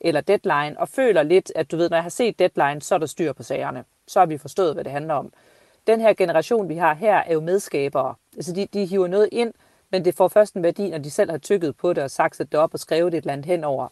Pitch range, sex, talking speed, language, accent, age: 155-195 Hz, female, 280 wpm, Danish, native, 40-59